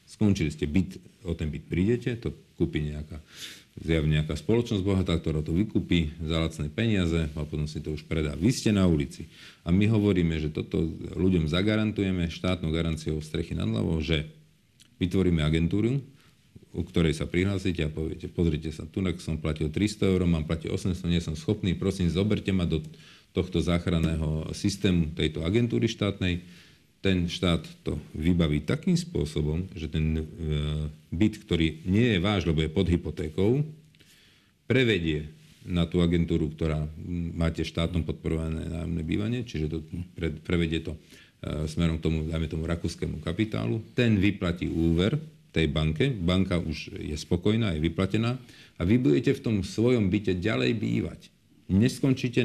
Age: 50-69